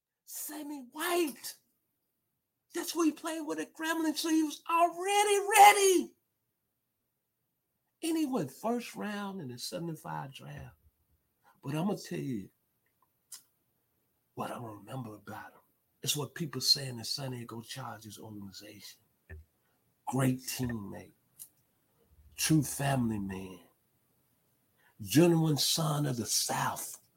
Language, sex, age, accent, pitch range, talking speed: English, male, 50-69, American, 110-170 Hz, 115 wpm